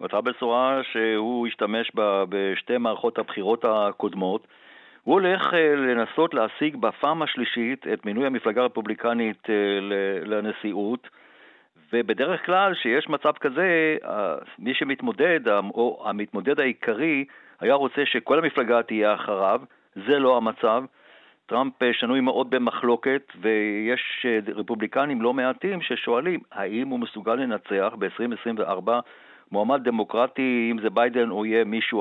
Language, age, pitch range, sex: Hebrew, 50-69, 110-140 Hz, male